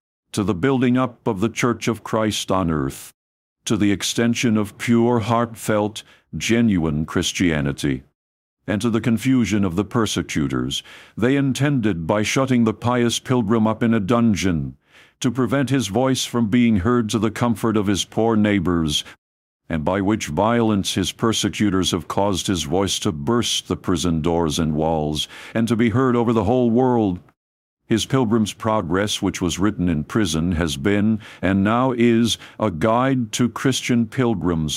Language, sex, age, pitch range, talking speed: English, male, 60-79, 90-120 Hz, 160 wpm